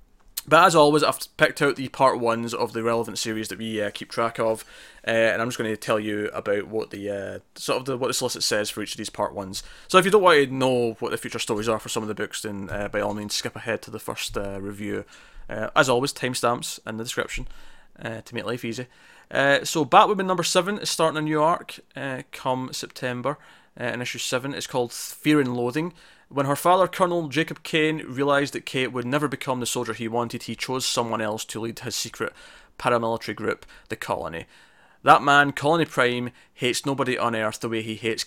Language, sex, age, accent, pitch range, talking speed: English, male, 20-39, British, 115-140 Hz, 230 wpm